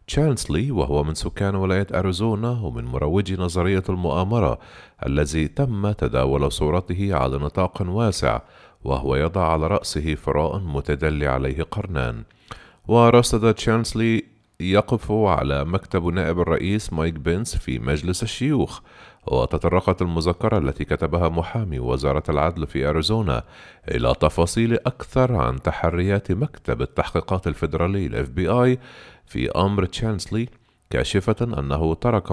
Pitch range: 80-110 Hz